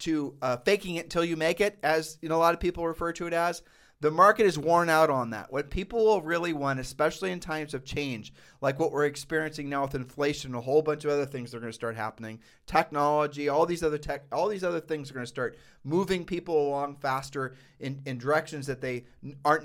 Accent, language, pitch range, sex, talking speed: American, English, 140-175 Hz, male, 230 wpm